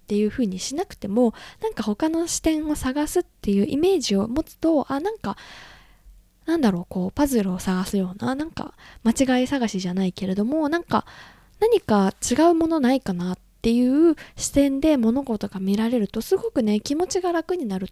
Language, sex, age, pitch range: Japanese, female, 20-39, 205-275 Hz